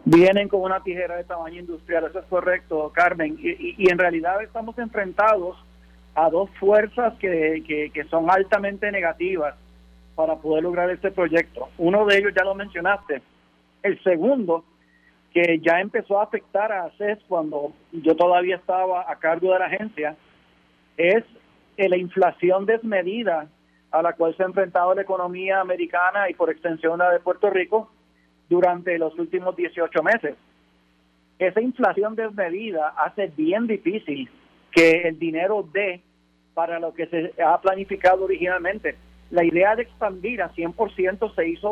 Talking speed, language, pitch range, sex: 150 wpm, Spanish, 160-195 Hz, male